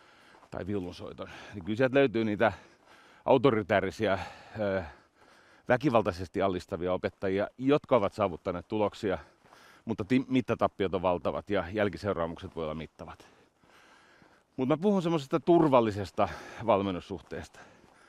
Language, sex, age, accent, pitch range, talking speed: Finnish, male, 40-59, native, 95-120 Hz, 85 wpm